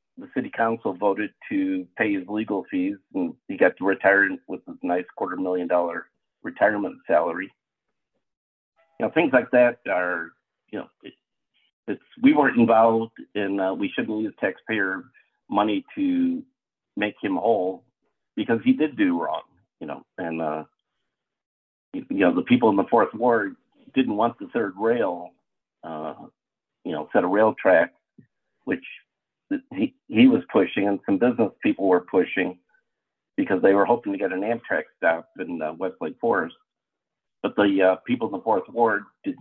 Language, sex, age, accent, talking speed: English, male, 50-69, American, 165 wpm